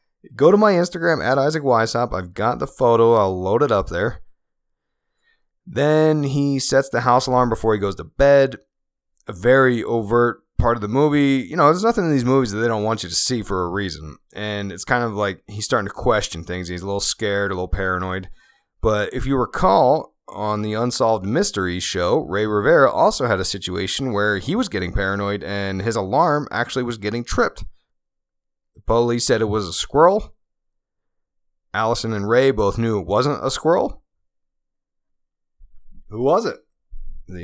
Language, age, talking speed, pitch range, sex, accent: English, 30-49, 185 wpm, 100-130 Hz, male, American